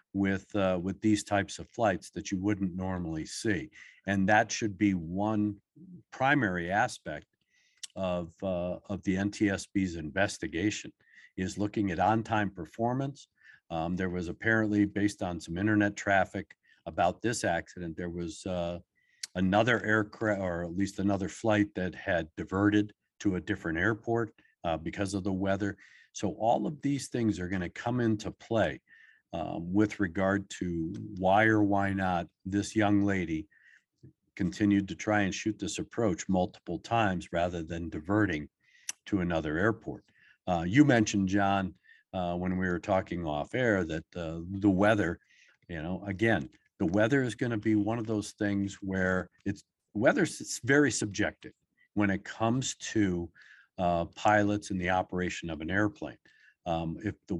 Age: 50-69